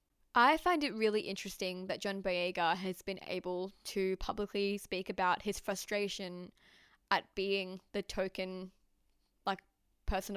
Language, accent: English, Australian